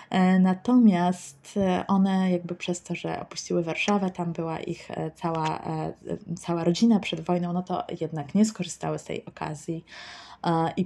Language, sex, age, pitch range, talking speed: Polish, female, 20-39, 160-200 Hz, 140 wpm